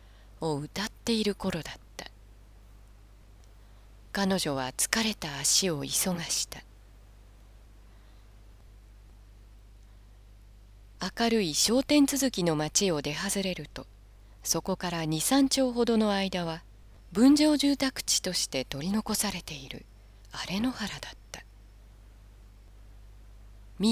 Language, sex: Japanese, female